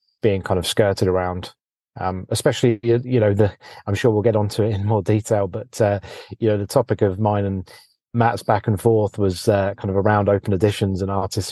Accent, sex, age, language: British, male, 30-49, English